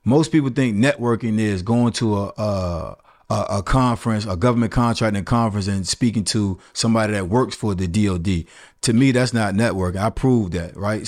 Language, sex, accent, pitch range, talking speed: English, male, American, 110-140 Hz, 180 wpm